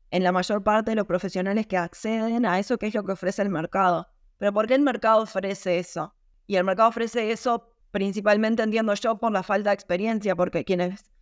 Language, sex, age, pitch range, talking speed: Spanish, female, 20-39, 190-225 Hz, 215 wpm